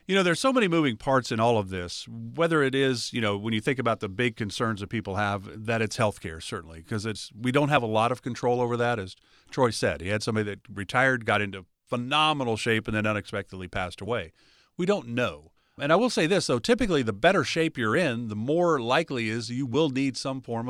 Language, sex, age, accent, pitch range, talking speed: English, male, 50-69, American, 110-160 Hz, 240 wpm